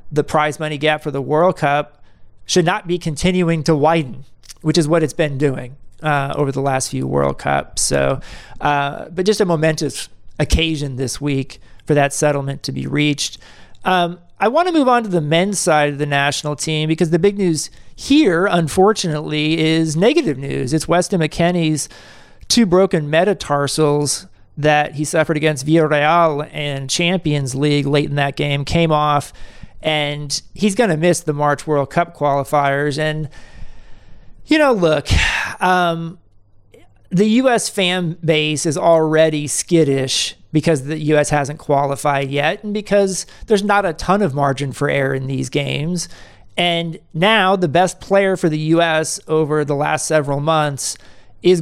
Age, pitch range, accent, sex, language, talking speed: 40-59, 140-170 Hz, American, male, English, 165 wpm